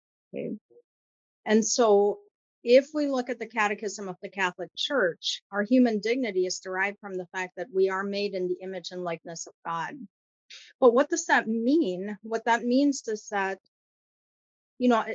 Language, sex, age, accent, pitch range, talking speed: English, female, 40-59, American, 185-235 Hz, 175 wpm